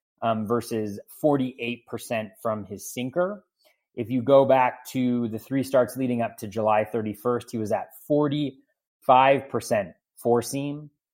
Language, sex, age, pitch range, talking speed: English, male, 30-49, 110-135 Hz, 130 wpm